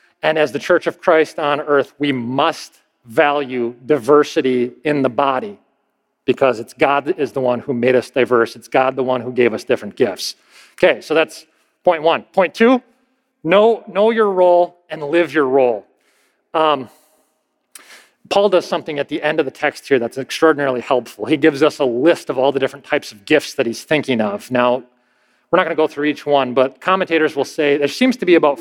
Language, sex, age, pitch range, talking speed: English, male, 40-59, 135-180 Hz, 205 wpm